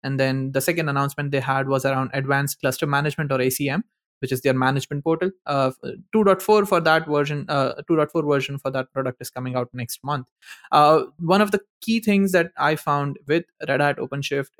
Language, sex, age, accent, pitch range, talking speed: English, male, 20-39, Indian, 135-165 Hz, 195 wpm